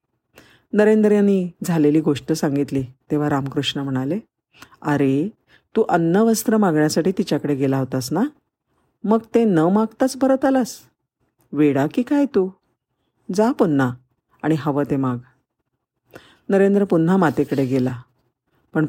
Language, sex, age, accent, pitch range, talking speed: Marathi, female, 50-69, native, 140-190 Hz, 120 wpm